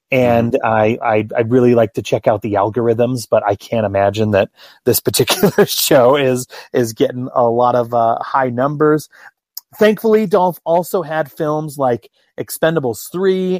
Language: English